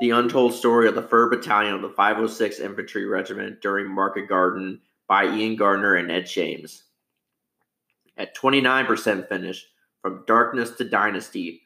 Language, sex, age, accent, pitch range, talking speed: English, male, 30-49, American, 100-115 Hz, 145 wpm